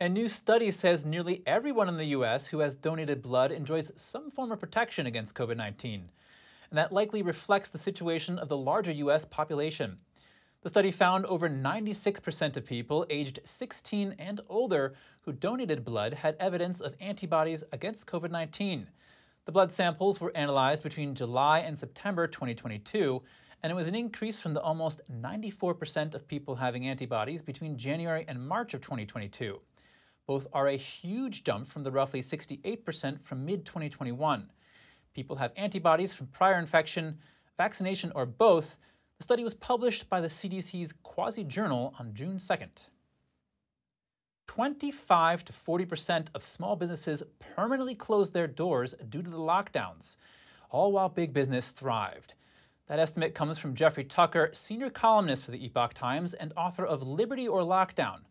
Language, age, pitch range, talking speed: English, 30-49, 140-190 Hz, 155 wpm